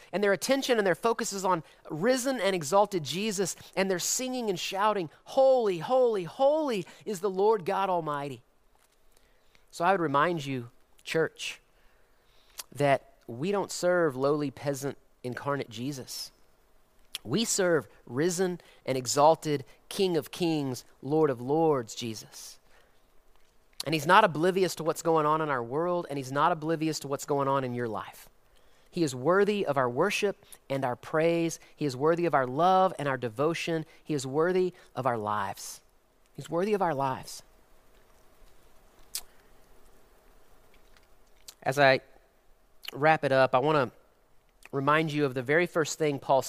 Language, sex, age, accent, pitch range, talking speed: English, male, 30-49, American, 135-185 Hz, 150 wpm